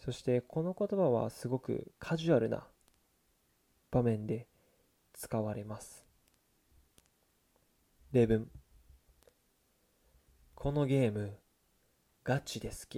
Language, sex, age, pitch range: Japanese, male, 20-39, 80-130 Hz